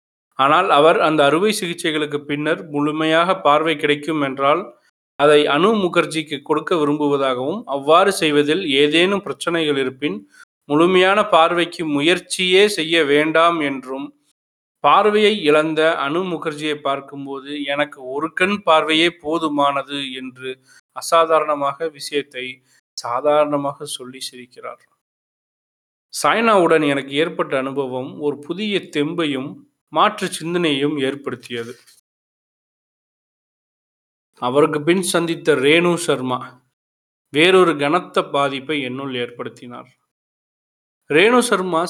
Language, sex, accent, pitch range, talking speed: Tamil, male, native, 140-170 Hz, 90 wpm